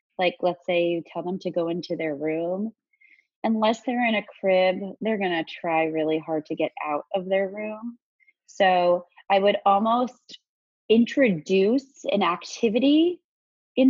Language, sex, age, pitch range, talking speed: English, female, 30-49, 160-230 Hz, 155 wpm